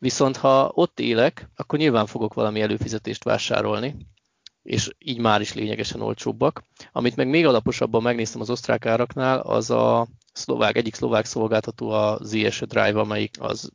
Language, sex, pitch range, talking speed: Hungarian, male, 110-130 Hz, 155 wpm